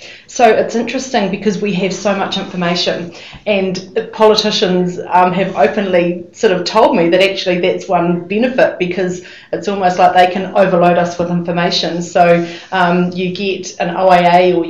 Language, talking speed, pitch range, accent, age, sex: English, 165 wpm, 170-185 Hz, Australian, 40-59, female